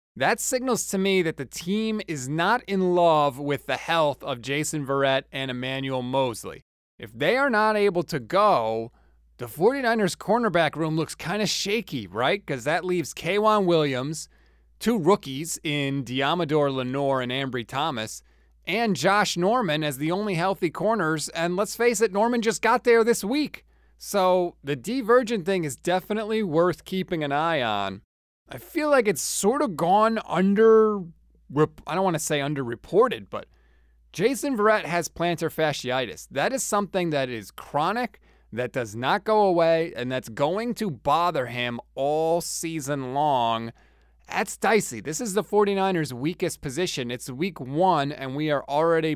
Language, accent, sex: English, American, male